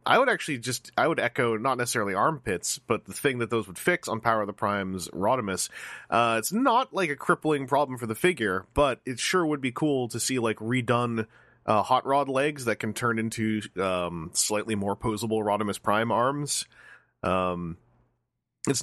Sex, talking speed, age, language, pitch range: male, 190 wpm, 30-49, English, 100-125 Hz